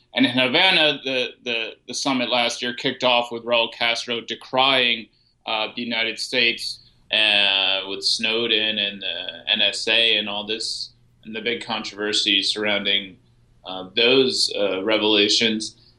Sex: male